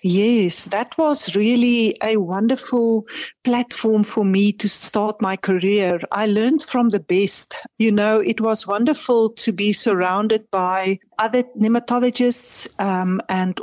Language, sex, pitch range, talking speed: English, female, 205-245 Hz, 135 wpm